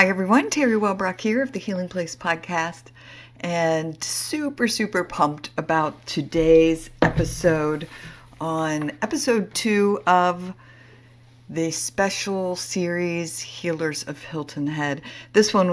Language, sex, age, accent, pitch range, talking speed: English, female, 50-69, American, 130-165 Hz, 115 wpm